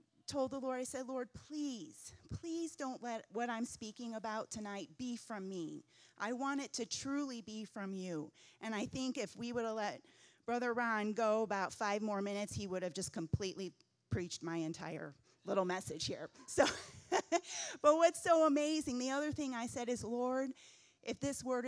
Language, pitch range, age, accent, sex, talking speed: English, 185-245 Hz, 30-49, American, female, 185 wpm